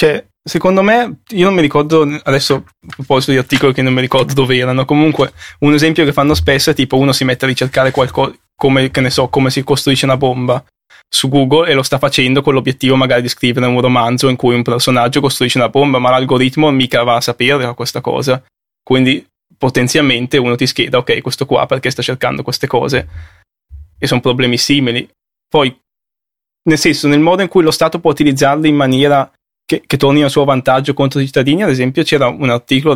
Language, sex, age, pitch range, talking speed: Italian, male, 20-39, 125-145 Hz, 205 wpm